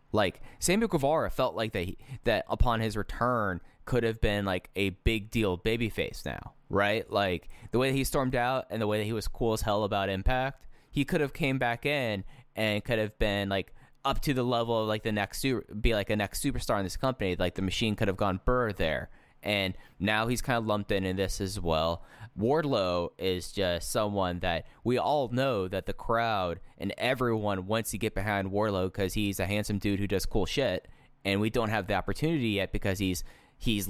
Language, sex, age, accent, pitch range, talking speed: English, male, 10-29, American, 95-120 Hz, 210 wpm